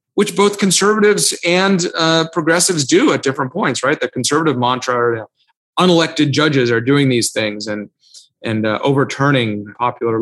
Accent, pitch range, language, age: American, 120-150 Hz, English, 30-49